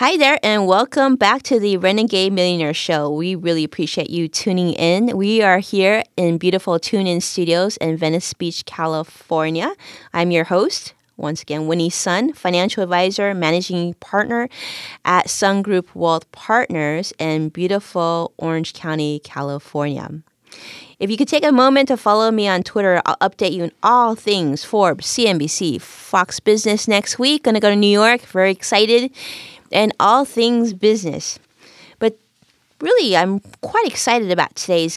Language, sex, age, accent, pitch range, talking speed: English, female, 20-39, American, 165-225 Hz, 155 wpm